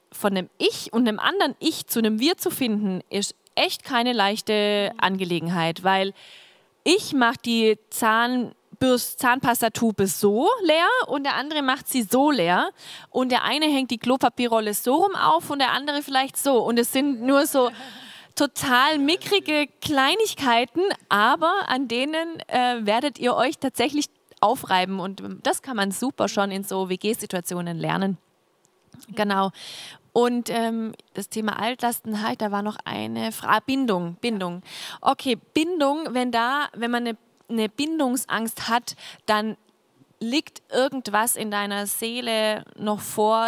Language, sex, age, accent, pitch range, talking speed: German, female, 20-39, German, 210-270 Hz, 145 wpm